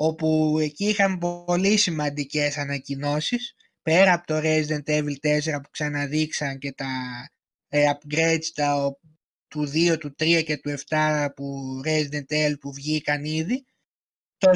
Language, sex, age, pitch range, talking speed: Greek, male, 20-39, 150-185 Hz, 130 wpm